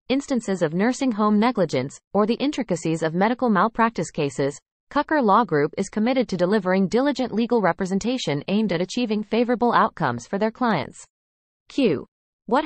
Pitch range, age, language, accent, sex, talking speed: 175-240 Hz, 20-39, English, American, female, 150 wpm